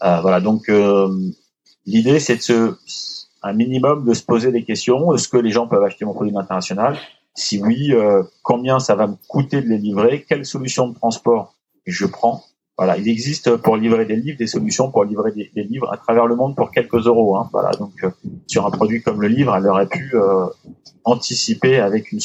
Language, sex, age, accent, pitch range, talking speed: French, male, 30-49, French, 105-125 Hz, 215 wpm